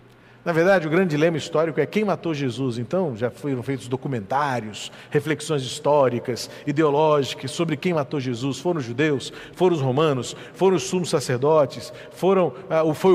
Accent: Brazilian